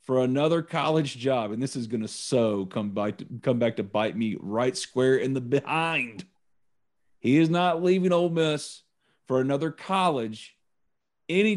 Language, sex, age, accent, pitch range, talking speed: English, male, 40-59, American, 135-180 Hz, 160 wpm